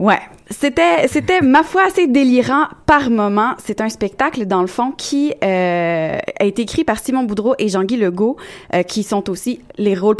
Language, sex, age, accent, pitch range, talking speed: French, female, 20-39, Canadian, 190-245 Hz, 180 wpm